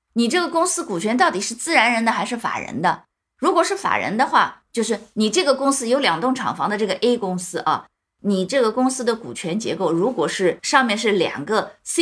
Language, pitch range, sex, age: Chinese, 175-260 Hz, female, 20-39